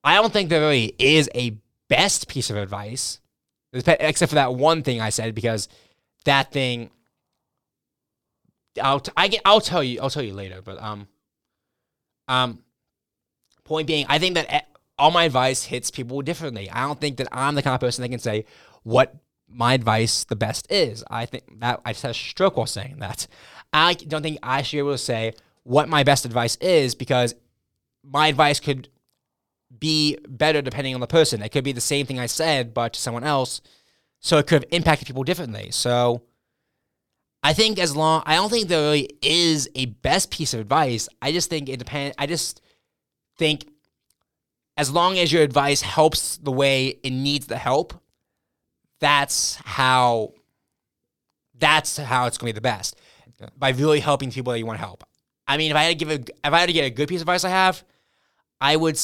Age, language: 20-39, English